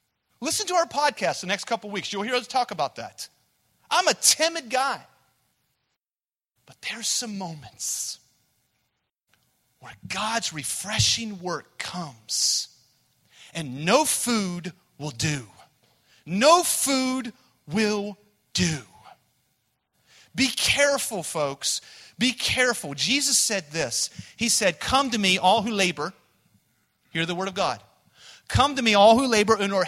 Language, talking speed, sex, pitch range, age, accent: English, 130 wpm, male, 175-245 Hz, 40-59, American